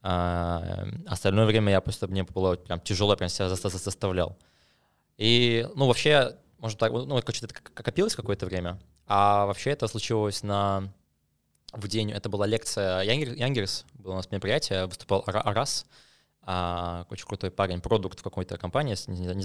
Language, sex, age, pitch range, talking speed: Russian, male, 20-39, 95-115 Hz, 140 wpm